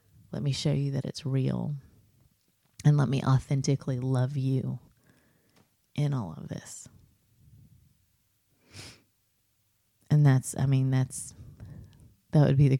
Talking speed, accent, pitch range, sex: 120 wpm, American, 120-140 Hz, female